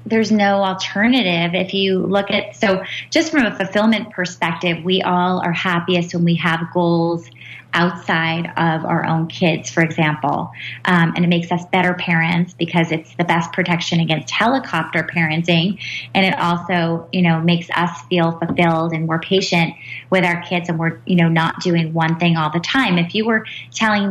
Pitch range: 165-195 Hz